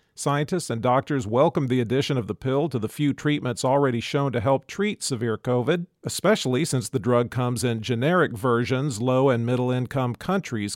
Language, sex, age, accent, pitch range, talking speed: English, male, 50-69, American, 125-155 Hz, 180 wpm